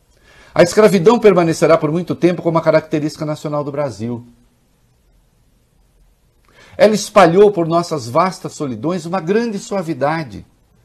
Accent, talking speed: Brazilian, 115 wpm